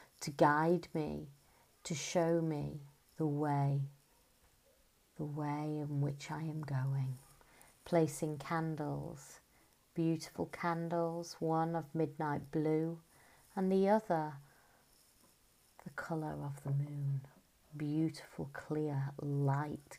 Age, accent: 40-59, British